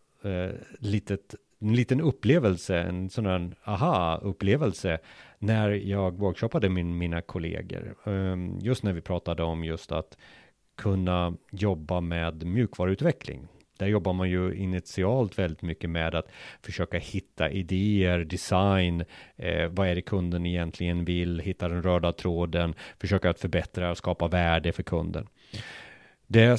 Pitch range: 85-105 Hz